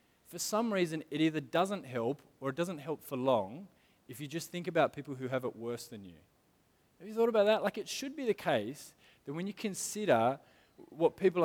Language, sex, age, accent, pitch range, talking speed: English, male, 20-39, Australian, 130-180 Hz, 220 wpm